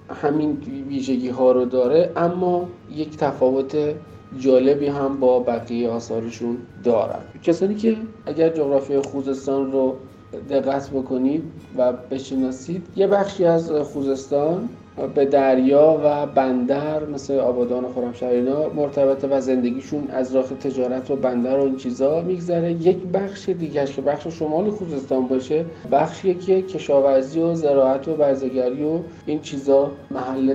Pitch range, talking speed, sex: 125-145 Hz, 130 wpm, male